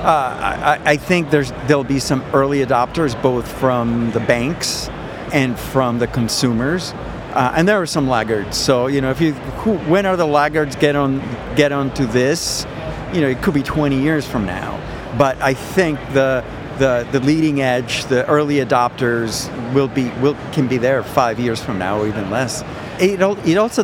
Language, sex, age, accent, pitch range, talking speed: English, male, 50-69, American, 125-155 Hz, 185 wpm